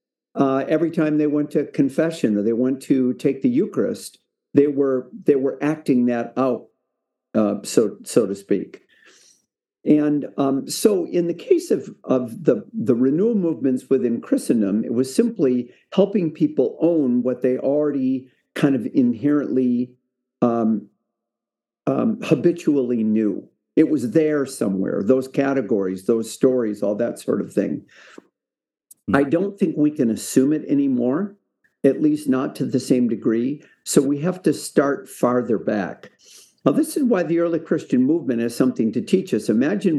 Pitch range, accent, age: 125-165 Hz, American, 50-69